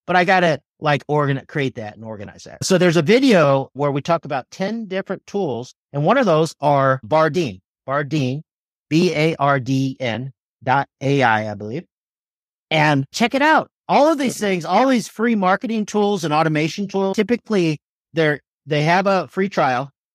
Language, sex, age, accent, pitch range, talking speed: English, male, 50-69, American, 135-195 Hz, 180 wpm